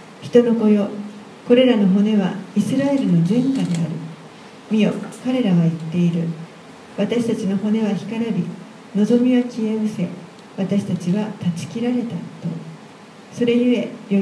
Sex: female